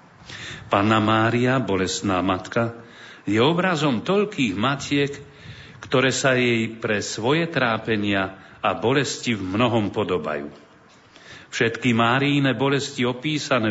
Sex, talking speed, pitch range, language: male, 100 wpm, 105-135 Hz, Slovak